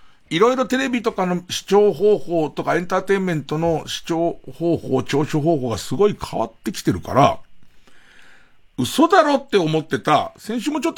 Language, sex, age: Japanese, male, 60-79